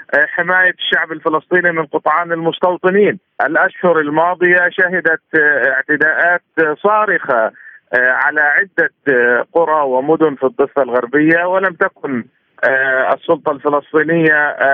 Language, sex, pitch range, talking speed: Arabic, male, 150-185 Hz, 90 wpm